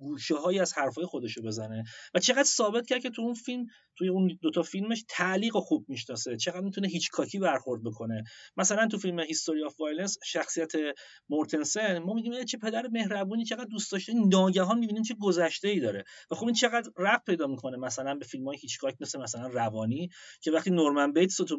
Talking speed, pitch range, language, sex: 185 wpm, 130-205 Hz, Persian, male